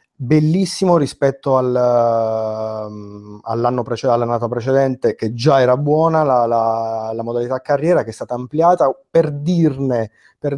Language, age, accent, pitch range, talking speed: Italian, 30-49, native, 115-140 Hz, 125 wpm